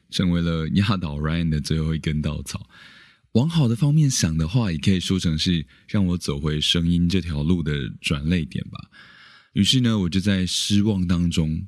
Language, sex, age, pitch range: Chinese, male, 20-39, 75-95 Hz